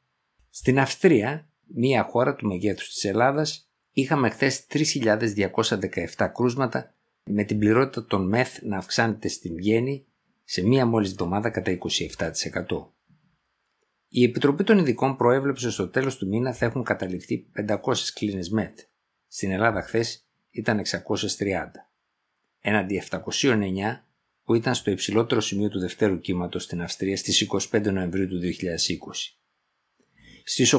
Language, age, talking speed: Greek, 50-69, 125 wpm